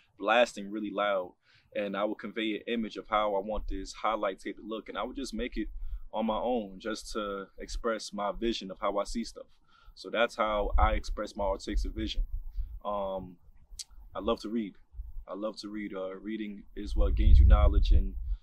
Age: 20-39